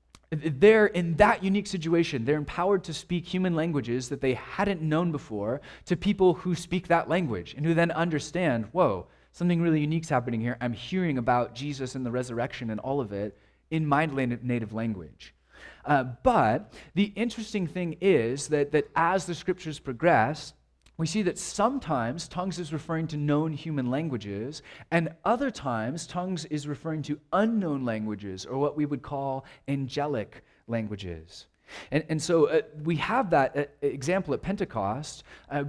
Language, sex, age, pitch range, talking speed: English, male, 30-49, 120-165 Hz, 165 wpm